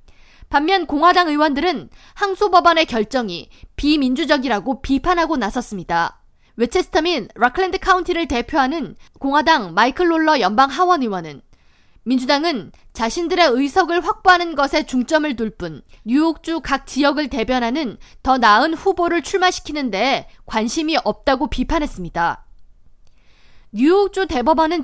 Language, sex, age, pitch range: Korean, female, 20-39, 235-335 Hz